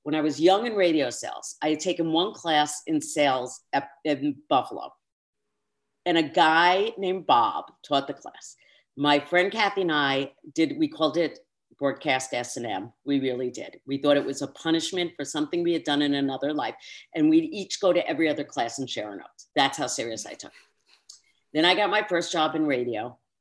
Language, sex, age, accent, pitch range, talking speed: English, female, 50-69, American, 135-170 Hz, 205 wpm